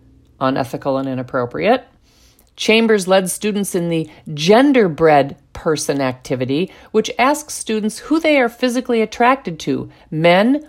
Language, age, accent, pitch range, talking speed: English, 50-69, American, 155-230 Hz, 120 wpm